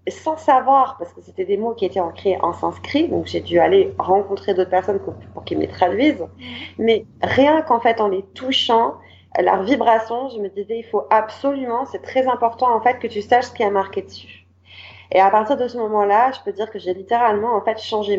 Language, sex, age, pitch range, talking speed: French, female, 30-49, 175-225 Hz, 220 wpm